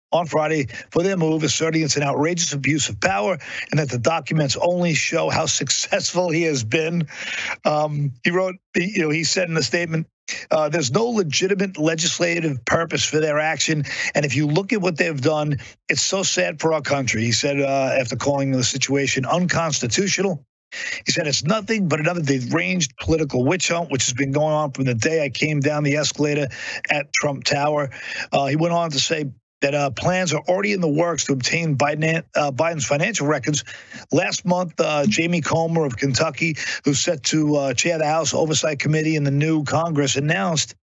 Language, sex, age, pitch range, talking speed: English, male, 50-69, 140-170 Hz, 195 wpm